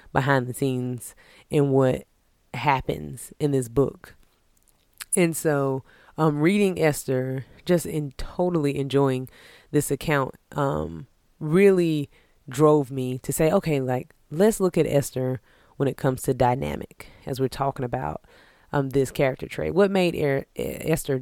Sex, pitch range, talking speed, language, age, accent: female, 130-155 Hz, 135 wpm, English, 20-39, American